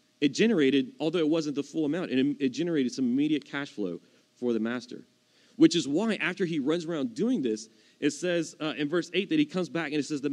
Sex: male